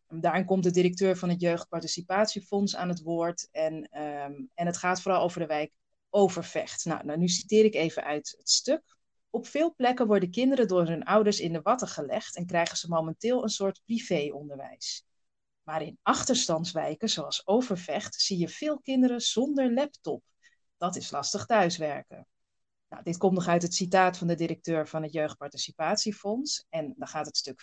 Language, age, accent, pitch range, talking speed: Dutch, 40-59, Dutch, 160-220 Hz, 170 wpm